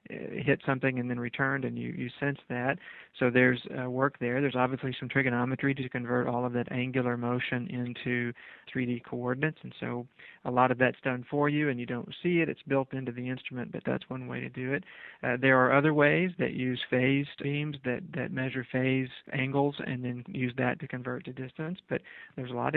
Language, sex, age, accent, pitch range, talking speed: English, male, 40-59, American, 125-135 Hz, 215 wpm